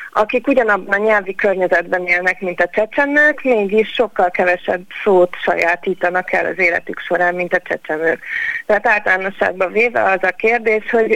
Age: 30-49